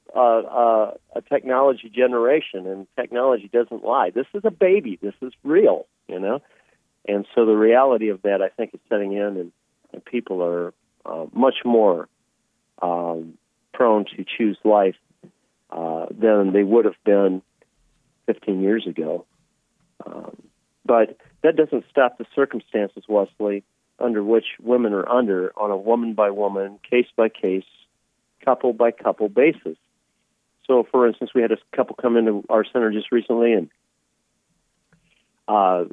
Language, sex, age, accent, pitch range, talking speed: English, male, 40-59, American, 105-130 Hz, 150 wpm